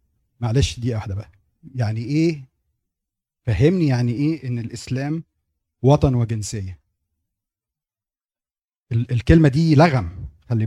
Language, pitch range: Arabic, 105-150 Hz